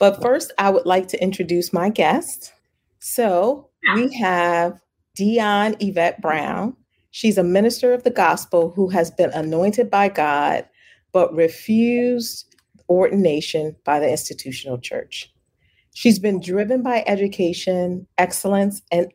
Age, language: 40-59, English